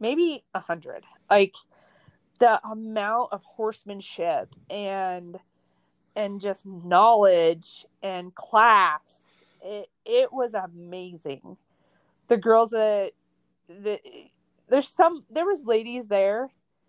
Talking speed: 95 wpm